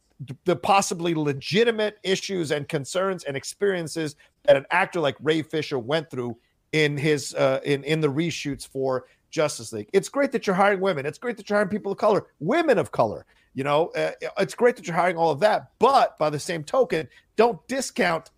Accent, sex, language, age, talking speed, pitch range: American, male, English, 50-69, 200 wpm, 145-190 Hz